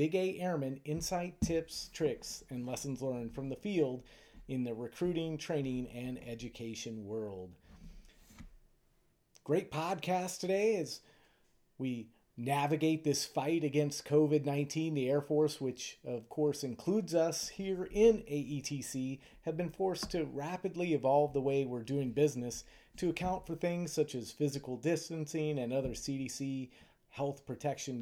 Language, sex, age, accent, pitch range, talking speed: English, male, 30-49, American, 125-150 Hz, 135 wpm